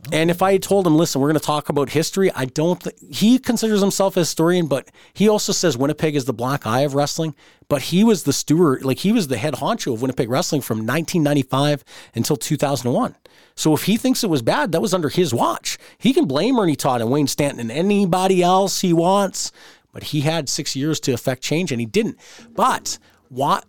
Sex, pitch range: male, 125-170 Hz